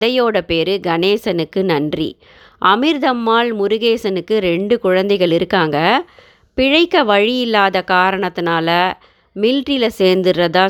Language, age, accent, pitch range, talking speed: Tamil, 30-49, native, 175-225 Hz, 85 wpm